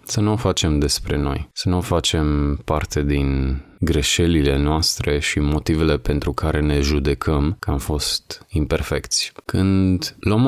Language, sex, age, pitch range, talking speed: Romanian, male, 20-39, 70-85 Hz, 150 wpm